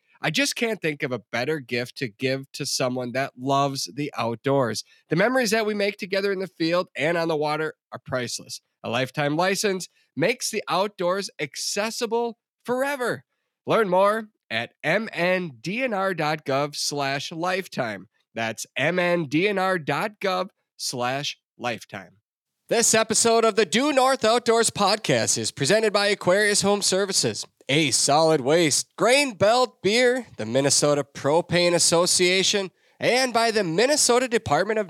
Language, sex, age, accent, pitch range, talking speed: English, male, 30-49, American, 145-220 Hz, 130 wpm